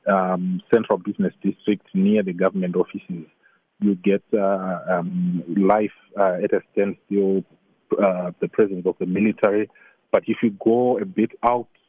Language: English